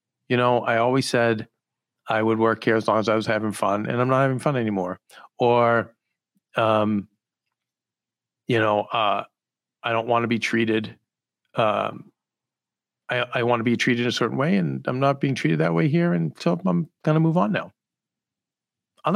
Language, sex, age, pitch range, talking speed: English, male, 40-59, 110-135 Hz, 190 wpm